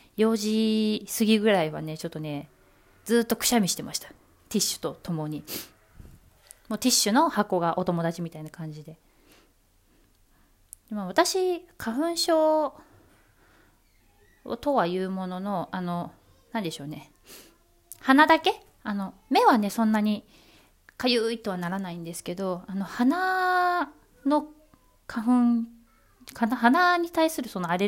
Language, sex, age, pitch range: Japanese, female, 20-39, 170-245 Hz